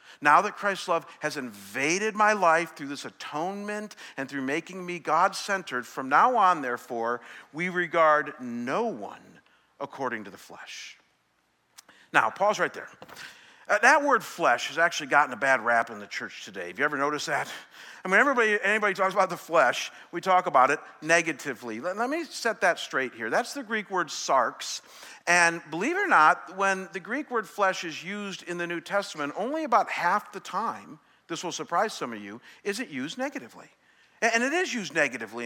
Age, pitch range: 50-69, 145-200 Hz